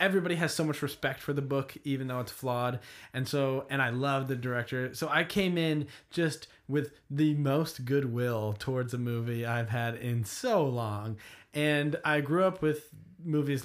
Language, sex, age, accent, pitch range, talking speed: English, male, 20-39, American, 115-150 Hz, 185 wpm